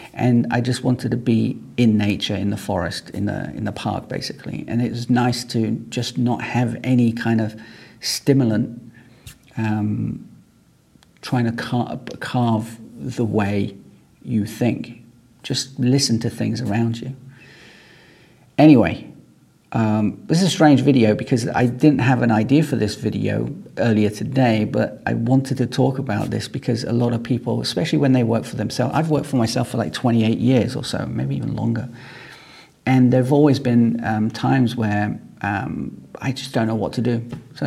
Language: English